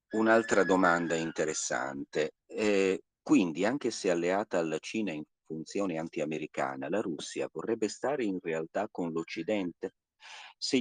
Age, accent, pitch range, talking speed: 50-69, native, 80-110 Hz, 120 wpm